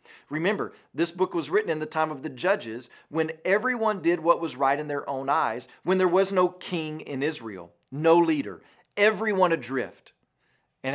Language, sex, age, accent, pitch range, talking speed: English, male, 40-59, American, 130-175 Hz, 180 wpm